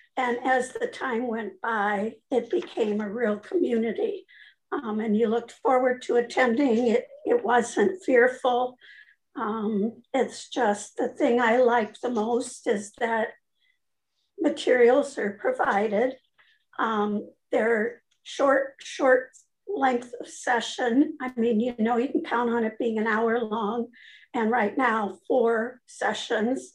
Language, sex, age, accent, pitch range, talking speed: English, female, 60-79, American, 230-265 Hz, 135 wpm